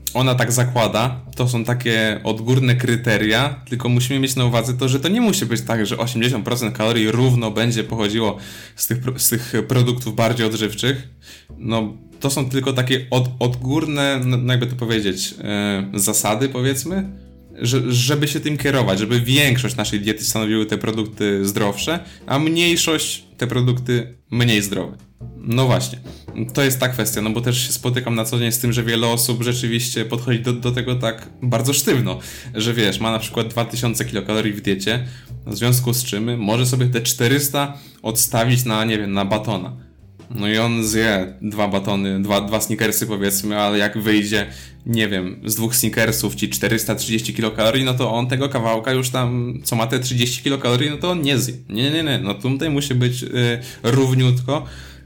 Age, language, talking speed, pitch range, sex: 20-39, Polish, 170 wpm, 110-125 Hz, male